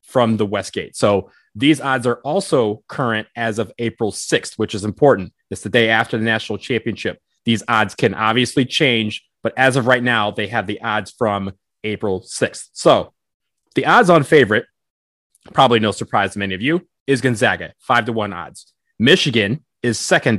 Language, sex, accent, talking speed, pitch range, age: English, male, American, 180 wpm, 110-150 Hz, 30-49